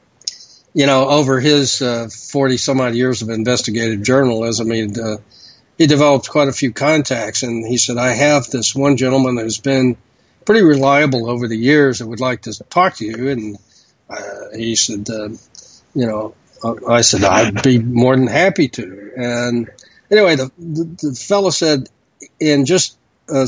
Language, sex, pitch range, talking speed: English, male, 115-140 Hz, 165 wpm